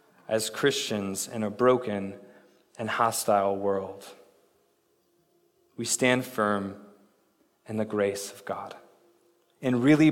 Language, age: English, 20-39